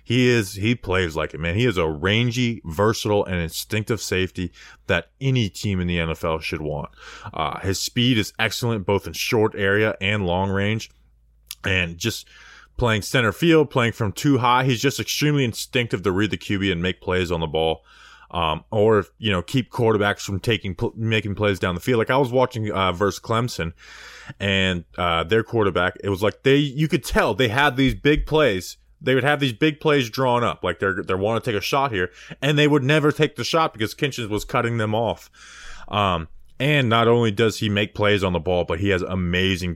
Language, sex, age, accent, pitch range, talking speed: English, male, 20-39, American, 90-125 Hz, 210 wpm